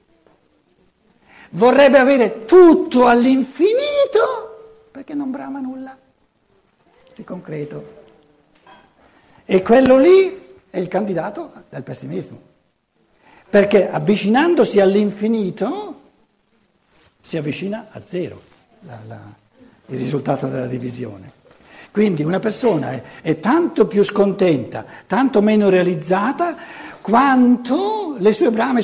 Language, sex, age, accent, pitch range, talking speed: Italian, male, 60-79, native, 175-265 Hz, 90 wpm